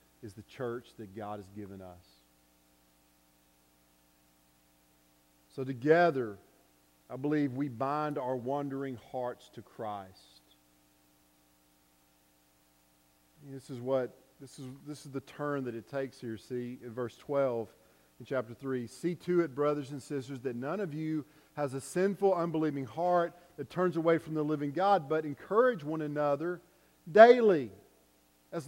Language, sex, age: English, male, 40-59